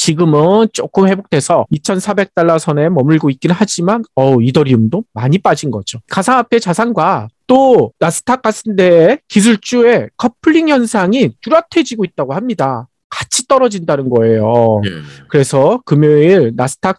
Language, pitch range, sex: Korean, 145-230 Hz, male